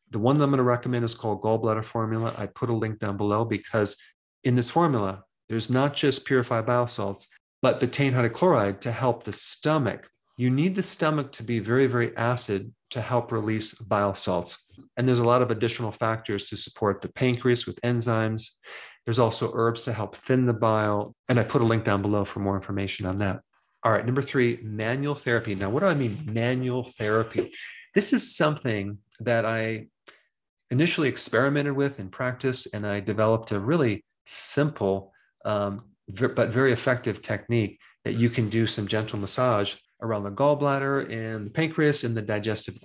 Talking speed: 185 wpm